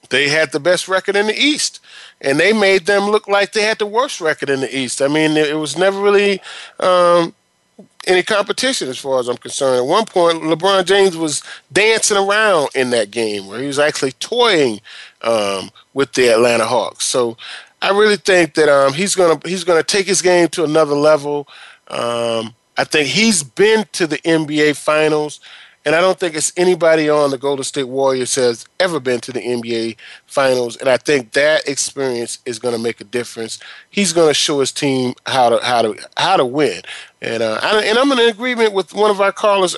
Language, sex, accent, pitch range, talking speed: English, male, American, 140-190 Hz, 205 wpm